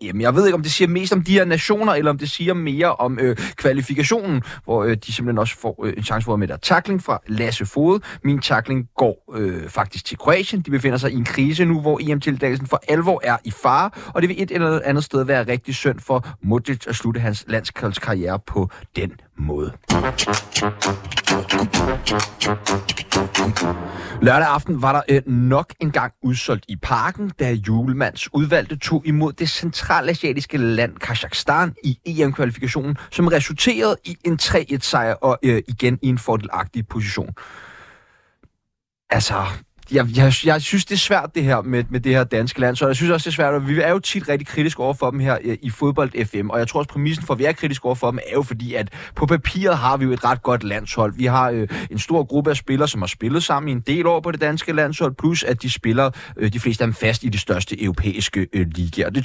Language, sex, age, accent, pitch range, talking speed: Danish, male, 30-49, native, 110-150 Hz, 215 wpm